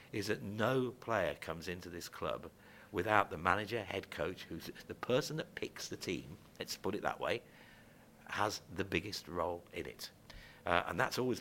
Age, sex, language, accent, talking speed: 50-69, male, English, British, 185 wpm